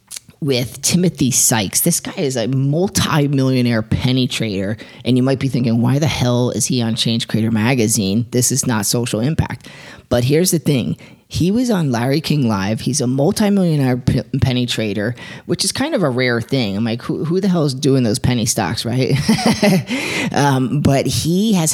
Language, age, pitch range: English, 30-49, 115-150 Hz